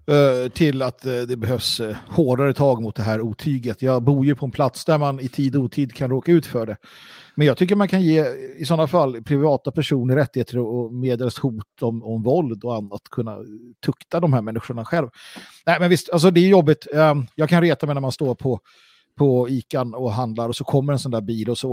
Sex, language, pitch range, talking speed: male, Swedish, 115-145 Hz, 225 wpm